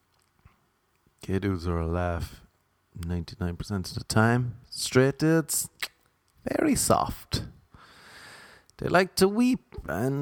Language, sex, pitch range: English, male, 100-160 Hz